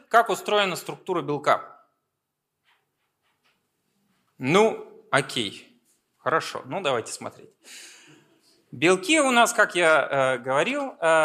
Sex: male